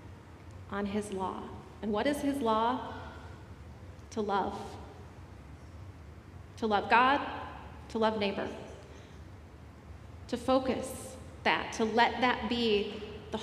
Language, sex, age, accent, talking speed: English, female, 30-49, American, 105 wpm